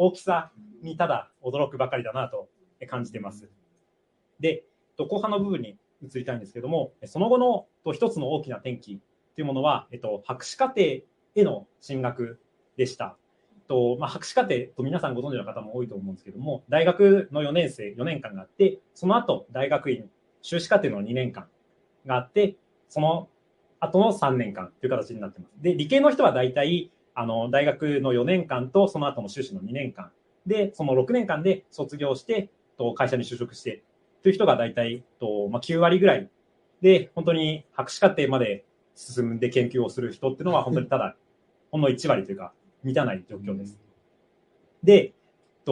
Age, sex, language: 30-49, male, Japanese